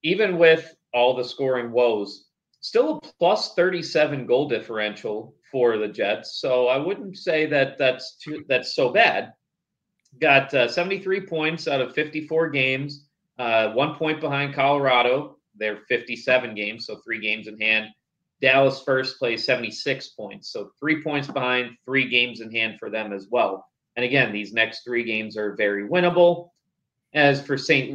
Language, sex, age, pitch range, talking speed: English, male, 30-49, 120-155 Hz, 160 wpm